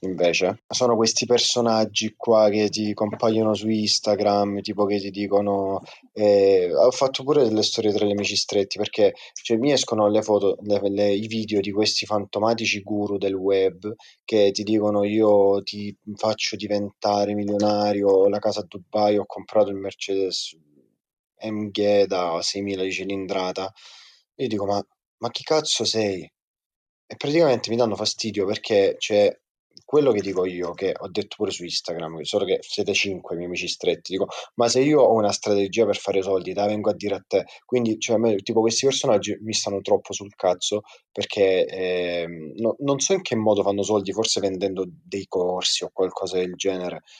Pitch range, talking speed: 100-110 Hz, 170 wpm